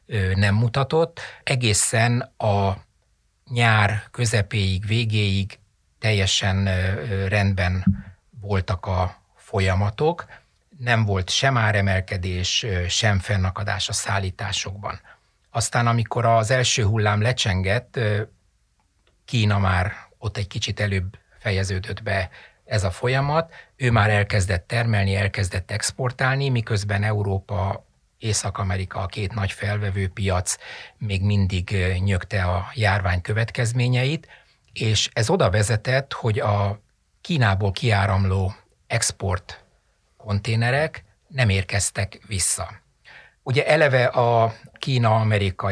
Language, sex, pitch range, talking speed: Hungarian, male, 95-115 Hz, 95 wpm